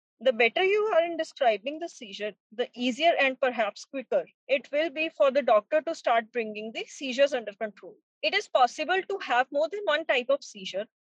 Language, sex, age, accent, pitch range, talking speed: English, female, 30-49, Indian, 235-315 Hz, 200 wpm